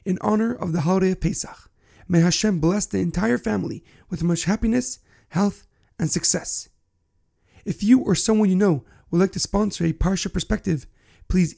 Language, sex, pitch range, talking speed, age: English, male, 155-210 Hz, 170 wpm, 40-59